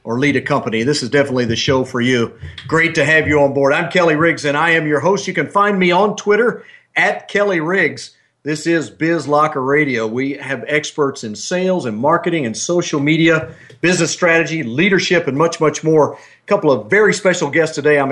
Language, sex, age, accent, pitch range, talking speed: English, male, 50-69, American, 130-170 Hz, 210 wpm